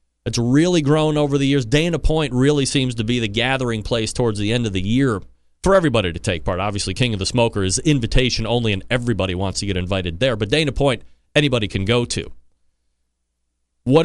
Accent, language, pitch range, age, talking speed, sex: American, English, 110-180 Hz, 30-49, 210 wpm, male